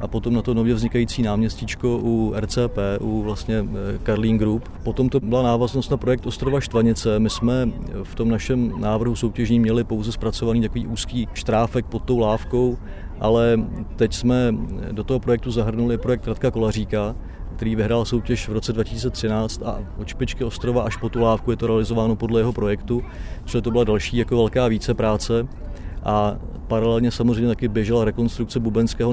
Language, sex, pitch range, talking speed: Czech, male, 105-120 Hz, 165 wpm